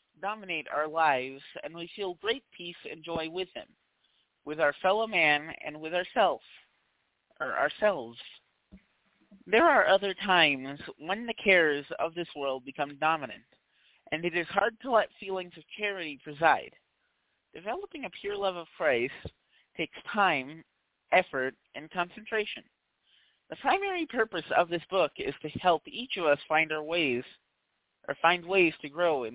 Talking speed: 155 wpm